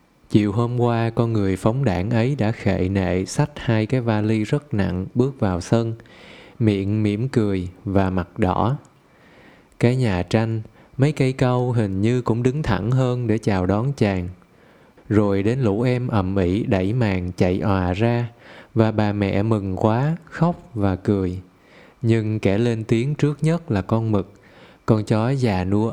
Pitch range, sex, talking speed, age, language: 100-125 Hz, male, 170 wpm, 20-39, Vietnamese